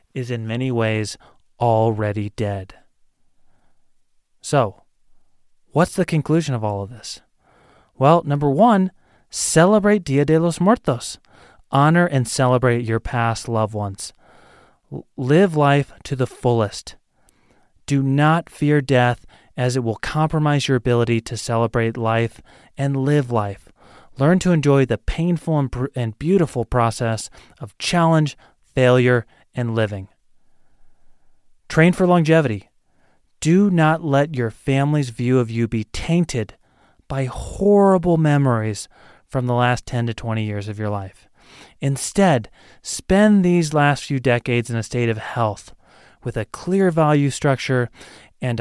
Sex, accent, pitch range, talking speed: male, American, 115-155 Hz, 135 wpm